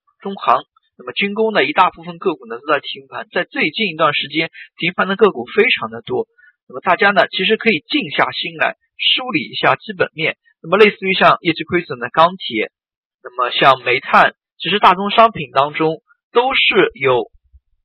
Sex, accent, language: male, native, Chinese